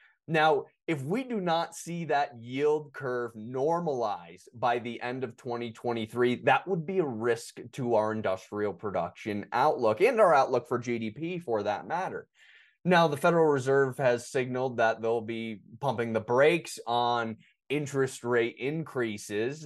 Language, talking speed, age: English, 150 wpm, 20-39